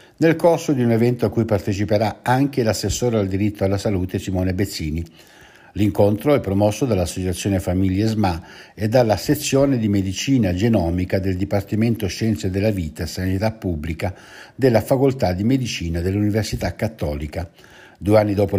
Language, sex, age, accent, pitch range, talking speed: Italian, male, 60-79, native, 90-110 Hz, 145 wpm